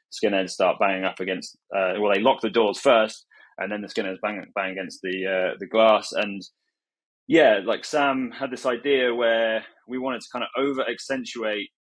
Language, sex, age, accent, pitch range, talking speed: English, male, 20-39, British, 100-120 Hz, 190 wpm